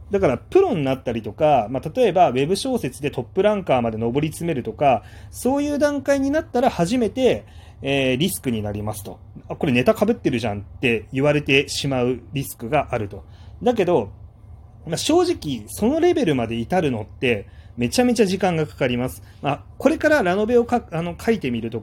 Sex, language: male, Japanese